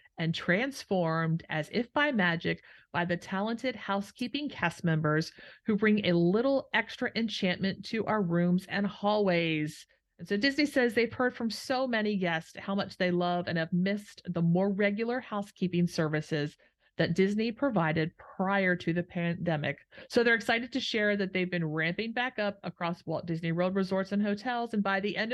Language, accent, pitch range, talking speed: English, American, 170-220 Hz, 175 wpm